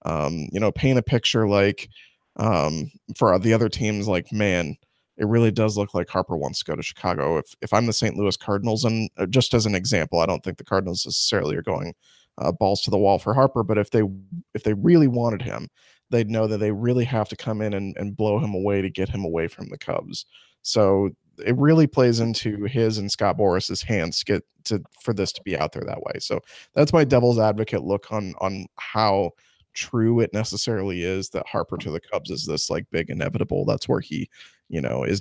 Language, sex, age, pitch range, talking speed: English, male, 20-39, 100-125 Hz, 225 wpm